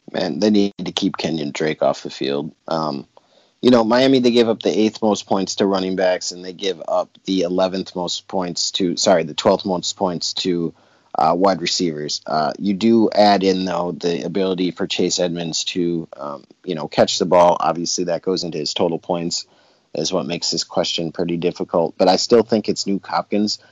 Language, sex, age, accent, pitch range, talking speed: English, male, 30-49, American, 85-100 Hz, 205 wpm